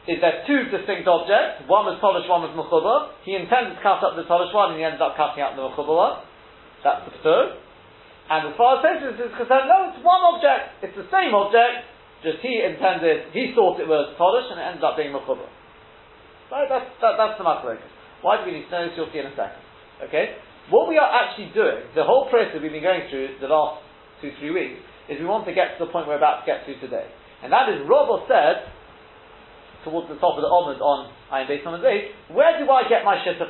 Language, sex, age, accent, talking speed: English, male, 40-59, British, 240 wpm